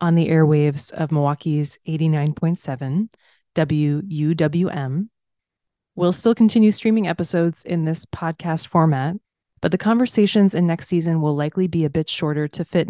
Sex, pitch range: female, 150-175 Hz